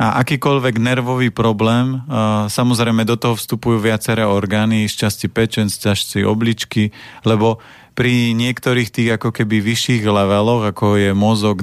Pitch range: 110-125 Hz